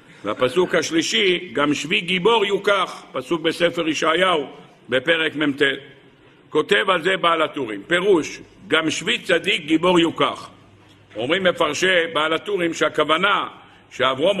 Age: 60-79